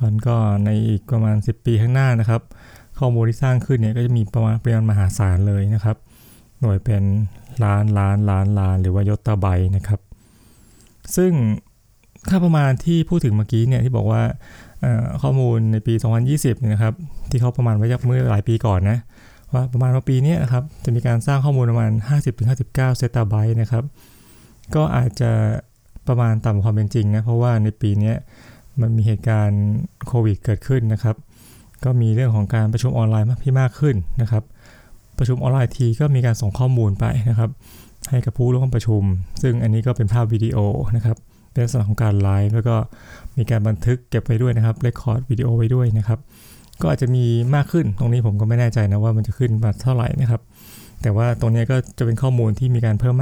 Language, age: Thai, 20-39